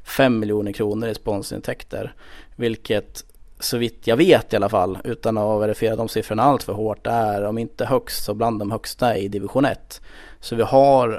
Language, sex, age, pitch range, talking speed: Swedish, male, 20-39, 105-125 Hz, 180 wpm